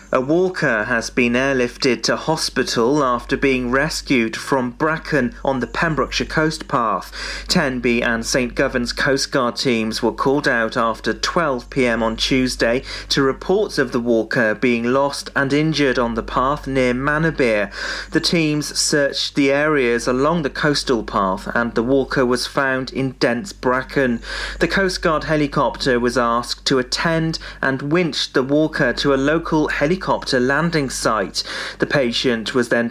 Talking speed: 155 wpm